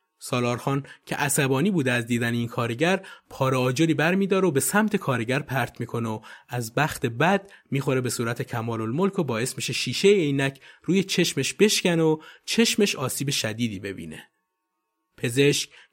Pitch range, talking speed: 125-170 Hz, 150 wpm